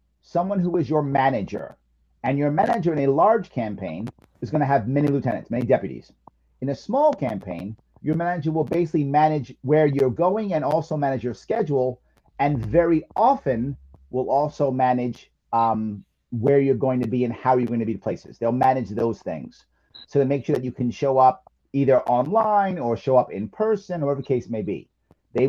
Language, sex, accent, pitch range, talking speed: English, male, American, 115-150 Hz, 195 wpm